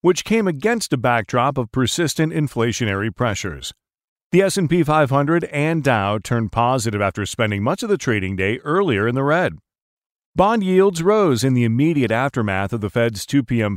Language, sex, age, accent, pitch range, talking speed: English, male, 40-59, American, 115-160 Hz, 170 wpm